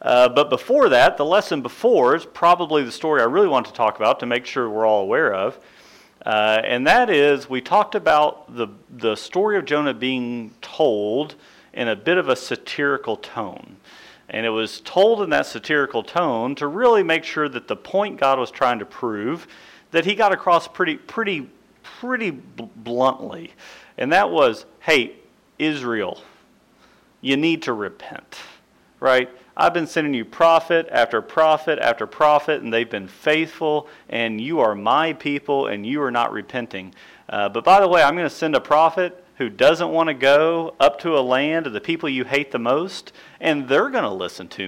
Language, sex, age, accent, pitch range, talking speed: English, male, 40-59, American, 120-165 Hz, 185 wpm